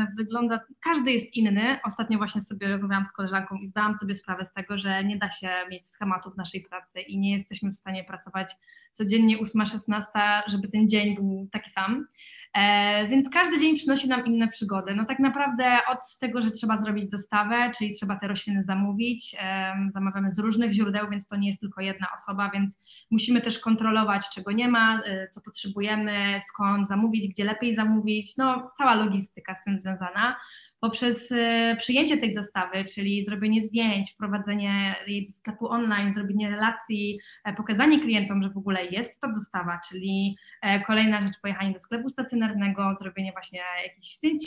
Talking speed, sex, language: 165 wpm, female, Polish